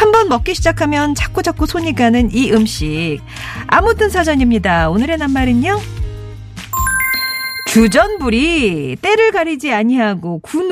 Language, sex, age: Korean, female, 40-59